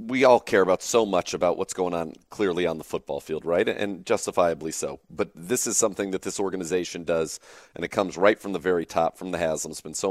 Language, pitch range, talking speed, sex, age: English, 80-90 Hz, 245 wpm, male, 40-59